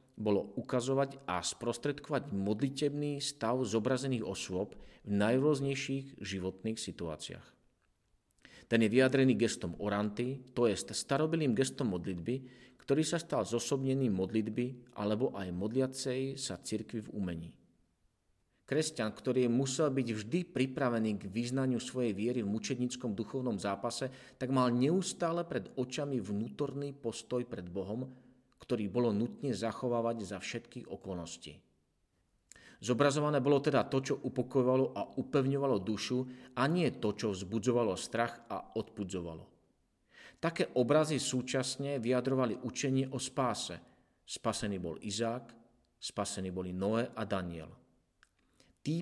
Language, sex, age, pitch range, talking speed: Slovak, male, 40-59, 105-135 Hz, 120 wpm